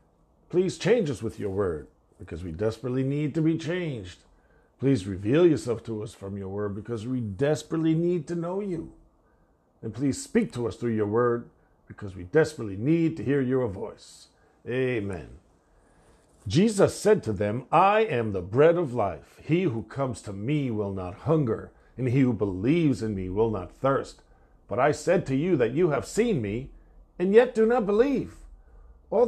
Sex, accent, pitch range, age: male, American, 110-175 Hz, 50-69